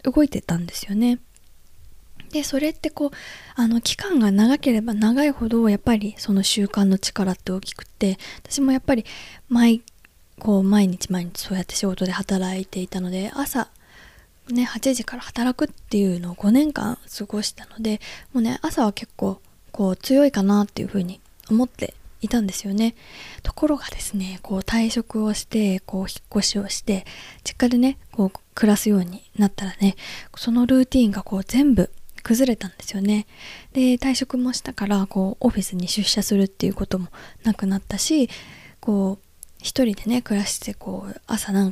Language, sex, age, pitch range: Japanese, female, 20-39, 200-255 Hz